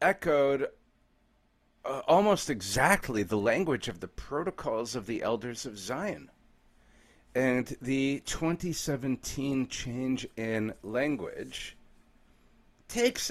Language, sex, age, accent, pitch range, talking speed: English, male, 40-59, American, 115-140 Hz, 95 wpm